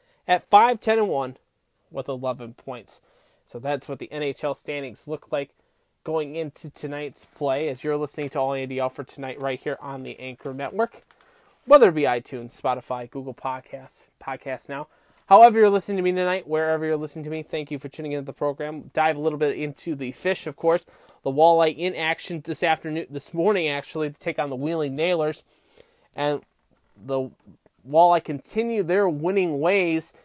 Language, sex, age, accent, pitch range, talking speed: English, male, 20-39, American, 140-175 Hz, 185 wpm